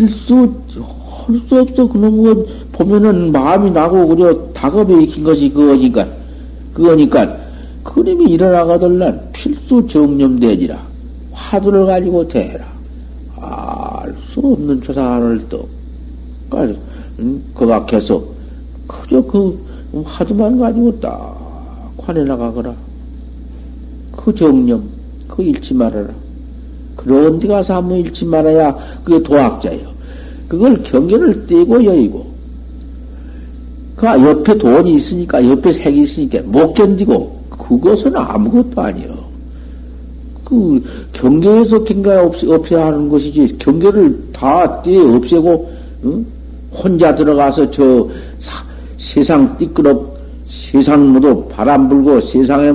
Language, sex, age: Korean, male, 60-79